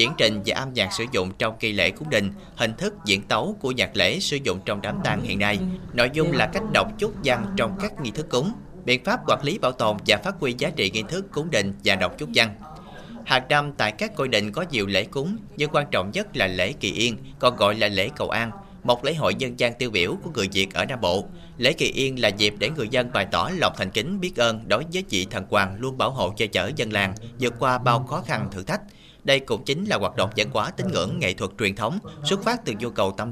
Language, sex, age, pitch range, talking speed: Vietnamese, male, 30-49, 105-145 Hz, 265 wpm